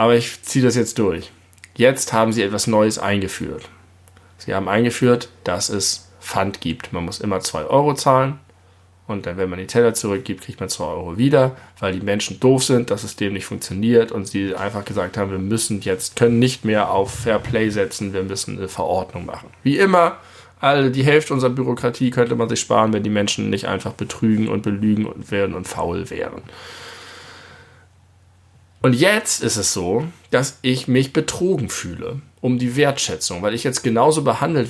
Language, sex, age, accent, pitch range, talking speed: German, male, 10-29, German, 100-130 Hz, 185 wpm